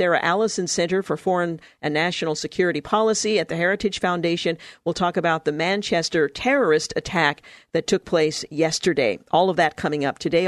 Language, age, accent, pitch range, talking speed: English, 50-69, American, 160-205 Hz, 170 wpm